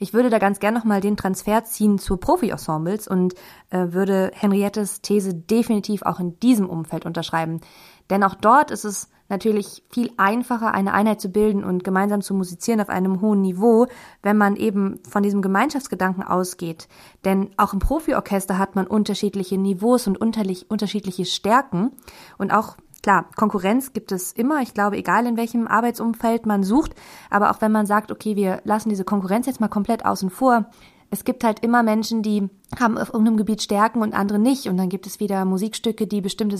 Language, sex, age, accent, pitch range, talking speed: German, female, 20-39, German, 190-220 Hz, 185 wpm